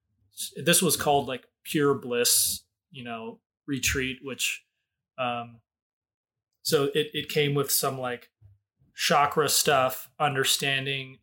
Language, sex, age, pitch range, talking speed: English, male, 20-39, 120-145 Hz, 110 wpm